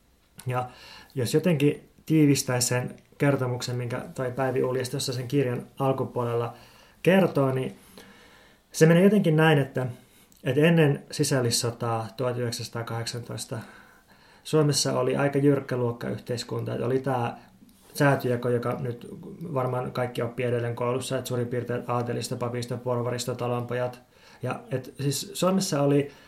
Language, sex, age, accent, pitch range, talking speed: Finnish, male, 20-39, native, 120-140 Hz, 115 wpm